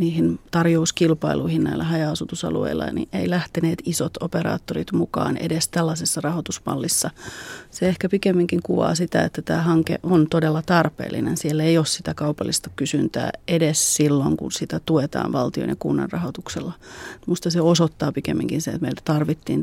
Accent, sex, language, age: native, female, Finnish, 30-49